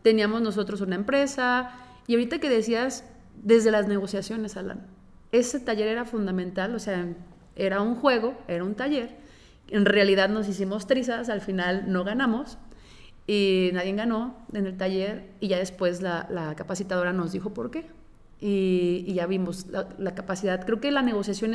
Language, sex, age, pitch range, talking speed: Spanish, female, 30-49, 190-240 Hz, 165 wpm